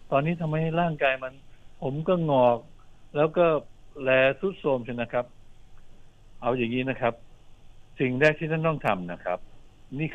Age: 60-79